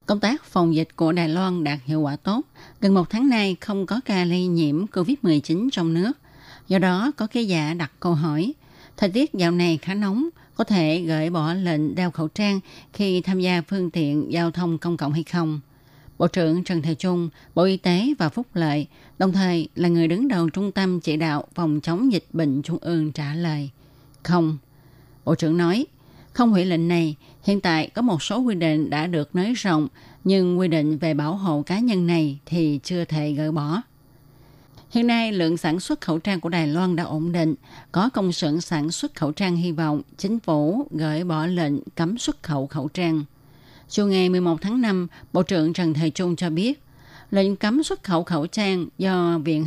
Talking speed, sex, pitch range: 205 wpm, female, 155-185 Hz